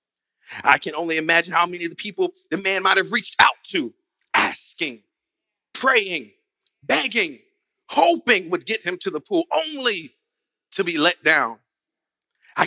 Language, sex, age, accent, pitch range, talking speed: English, male, 30-49, American, 160-210 Hz, 150 wpm